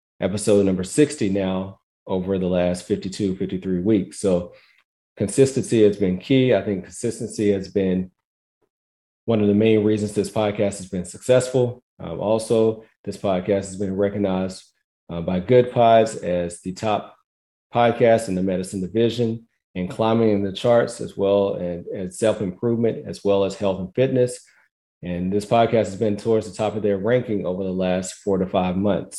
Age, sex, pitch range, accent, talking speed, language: 40-59, male, 95-110 Hz, American, 170 wpm, English